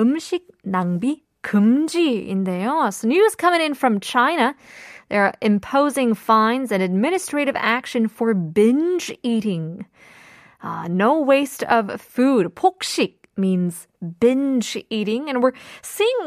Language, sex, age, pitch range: Korean, female, 20-39, 195-265 Hz